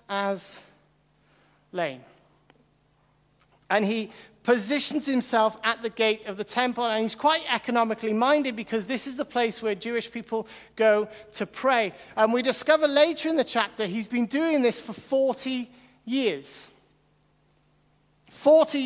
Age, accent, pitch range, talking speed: 40-59, British, 210-255 Hz, 135 wpm